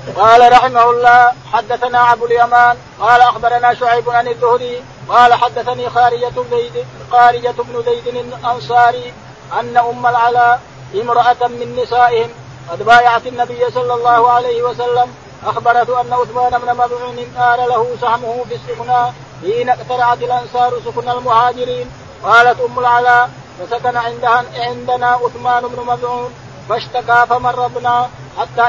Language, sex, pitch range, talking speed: Arabic, male, 235-245 Hz, 120 wpm